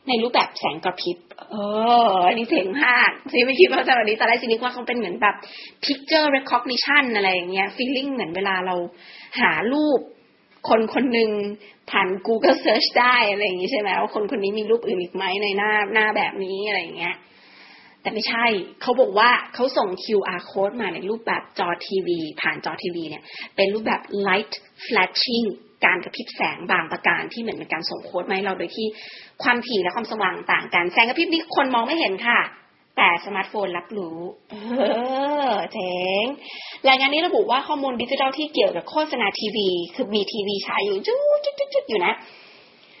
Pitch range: 200-260 Hz